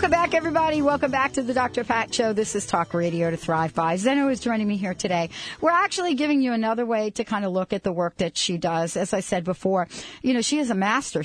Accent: American